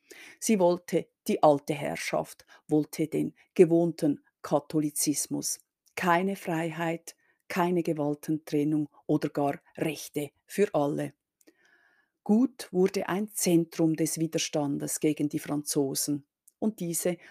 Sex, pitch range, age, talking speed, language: female, 155-175 Hz, 50-69, 100 wpm, German